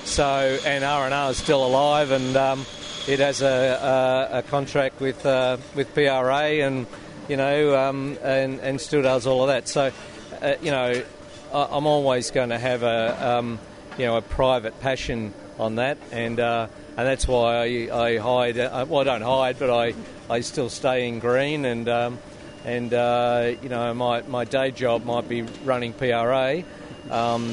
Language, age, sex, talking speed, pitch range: English, 50-69, male, 180 wpm, 115-135 Hz